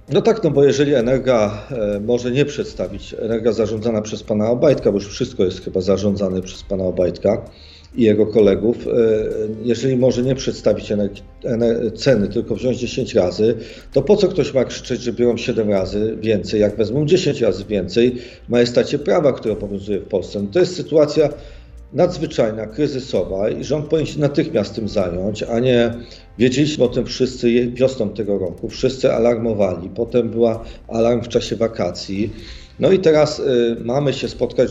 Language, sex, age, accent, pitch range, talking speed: Polish, male, 50-69, native, 105-130 Hz, 170 wpm